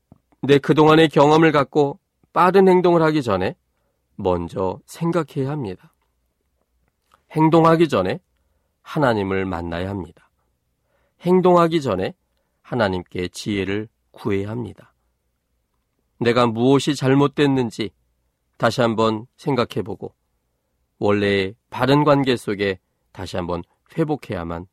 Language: Korean